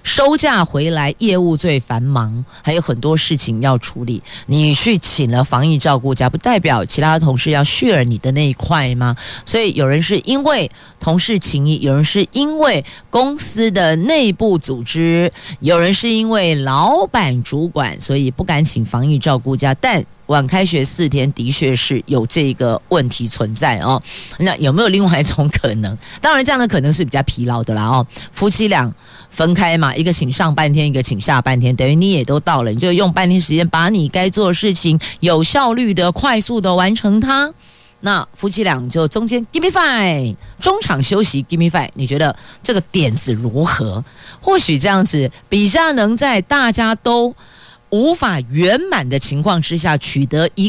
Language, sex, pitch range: Chinese, female, 135-195 Hz